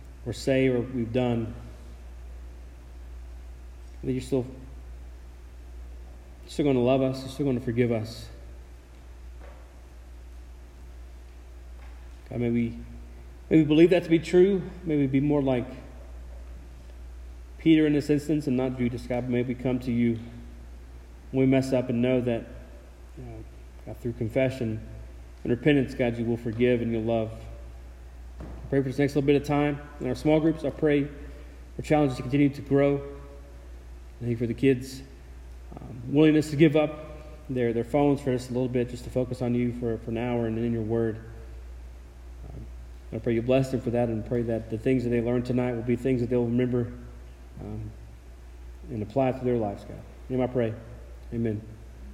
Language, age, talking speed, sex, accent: English, 30-49, 175 wpm, male, American